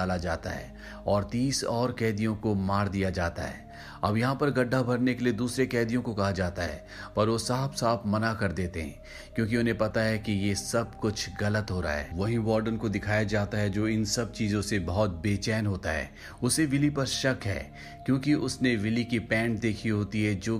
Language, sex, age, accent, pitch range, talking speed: Hindi, male, 30-49, native, 100-120 Hz, 115 wpm